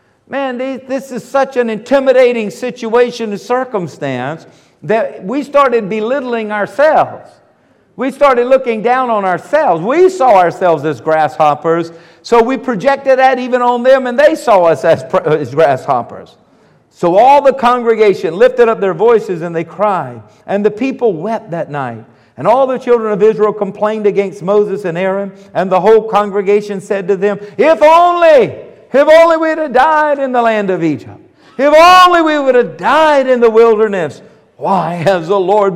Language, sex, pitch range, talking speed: English, male, 180-255 Hz, 165 wpm